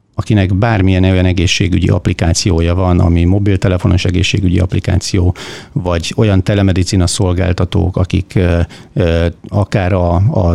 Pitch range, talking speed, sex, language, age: 90-110 Hz, 100 wpm, male, Hungarian, 50-69